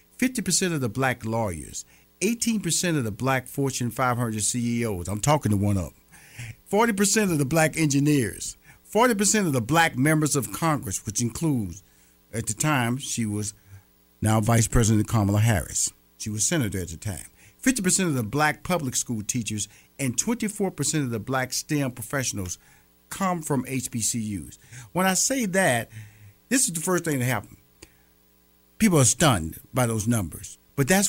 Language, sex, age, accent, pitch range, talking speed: English, male, 50-69, American, 105-160 Hz, 160 wpm